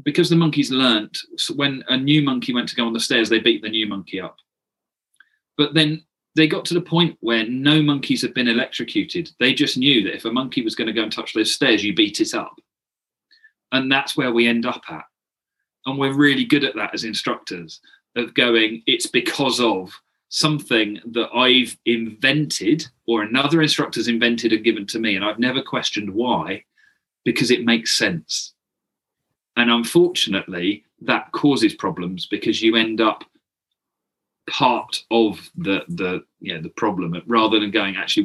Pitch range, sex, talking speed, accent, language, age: 115-170 Hz, male, 175 wpm, British, English, 40-59